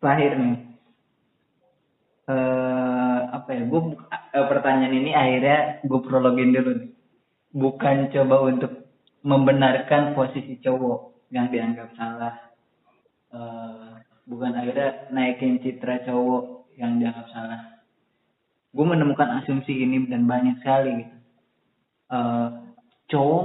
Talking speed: 105 wpm